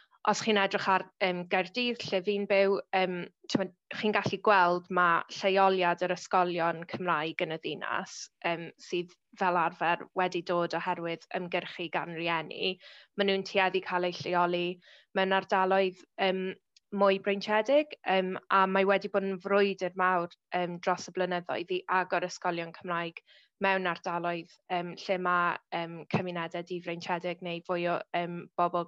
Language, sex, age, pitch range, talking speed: English, female, 20-39, 175-195 Hz, 150 wpm